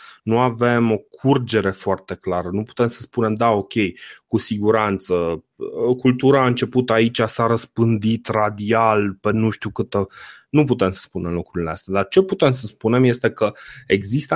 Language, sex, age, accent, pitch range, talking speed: Romanian, male, 20-39, native, 95-120 Hz, 165 wpm